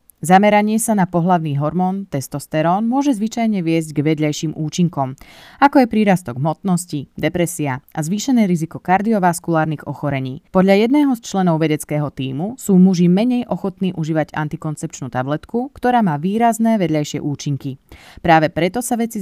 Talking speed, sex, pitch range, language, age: 135 wpm, female, 150-210 Hz, Slovak, 20-39